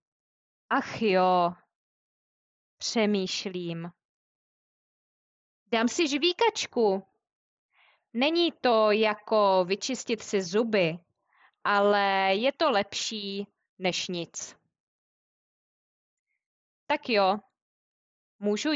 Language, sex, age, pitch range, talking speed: English, female, 20-39, 185-255 Hz, 65 wpm